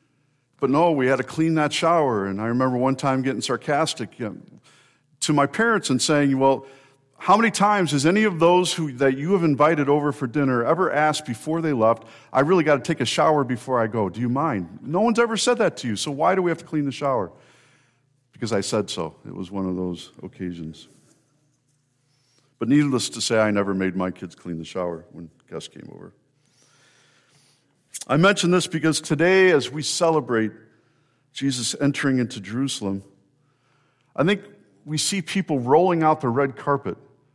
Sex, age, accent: male, 50-69, American